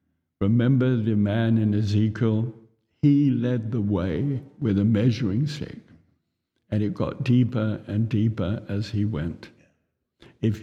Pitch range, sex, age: 110-135 Hz, male, 60-79